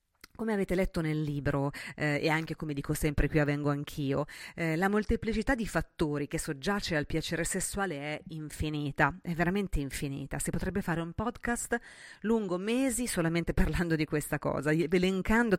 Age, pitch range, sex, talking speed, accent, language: 30-49, 150-190 Hz, female, 160 wpm, native, Italian